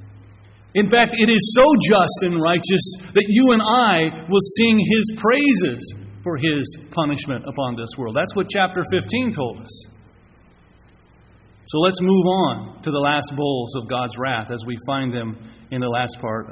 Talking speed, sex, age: 170 wpm, male, 40-59